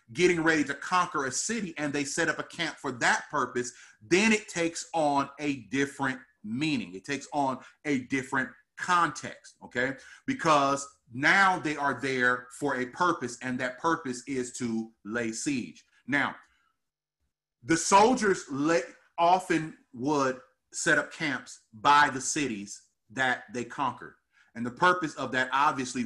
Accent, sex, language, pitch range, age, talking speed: American, male, English, 125-165 Hz, 30-49, 145 wpm